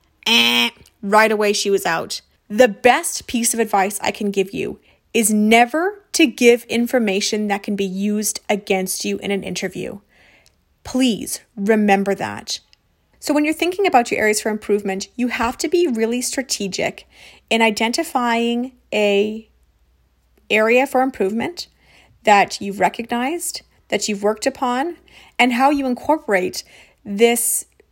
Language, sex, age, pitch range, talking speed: English, female, 30-49, 200-250 Hz, 140 wpm